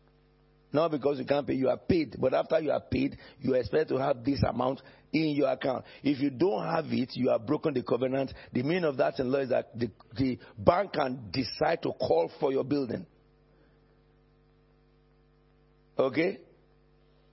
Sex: male